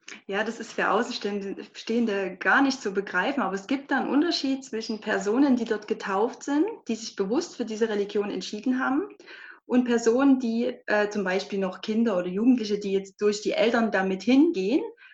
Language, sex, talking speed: German, female, 180 wpm